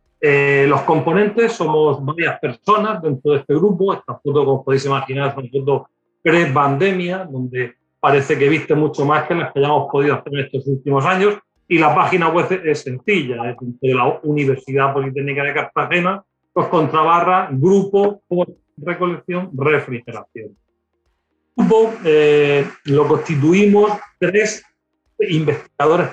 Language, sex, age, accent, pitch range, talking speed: Spanish, male, 40-59, Spanish, 135-175 Hz, 140 wpm